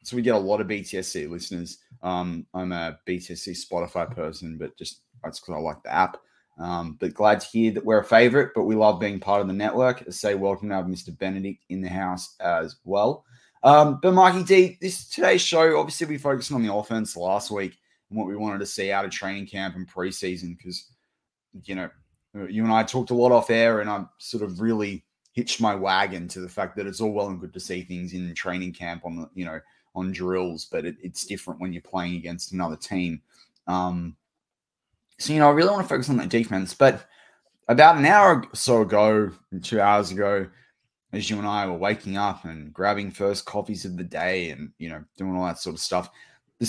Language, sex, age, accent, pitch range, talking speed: English, male, 20-39, Australian, 90-115 Hz, 225 wpm